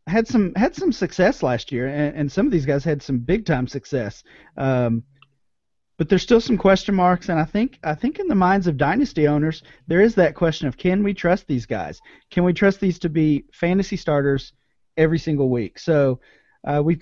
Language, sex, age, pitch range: English, male, 40-59, 130-170 Hz